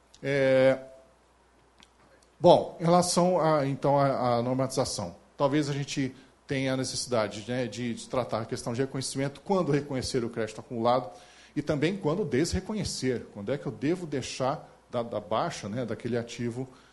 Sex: male